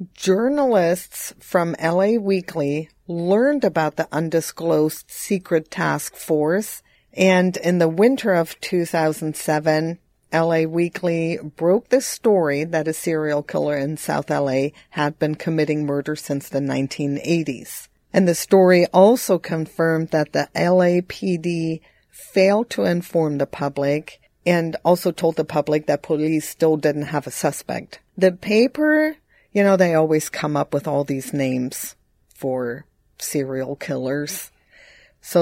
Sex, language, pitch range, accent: female, English, 155-190 Hz, American